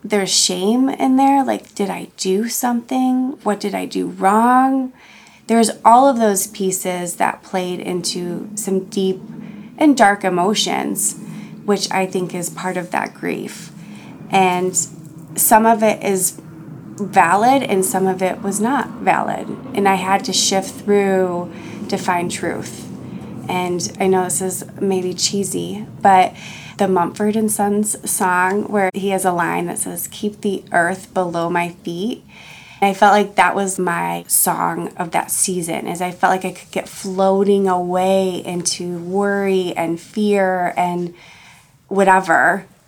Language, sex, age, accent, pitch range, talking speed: English, female, 20-39, American, 180-205 Hz, 155 wpm